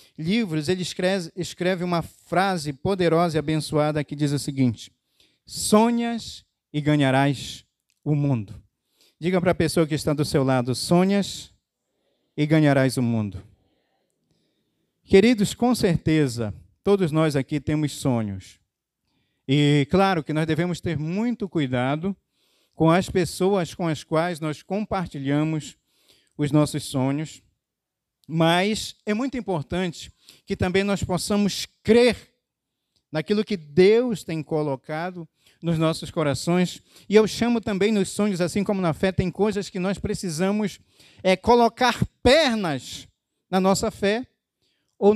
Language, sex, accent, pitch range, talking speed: Portuguese, male, Brazilian, 150-200 Hz, 130 wpm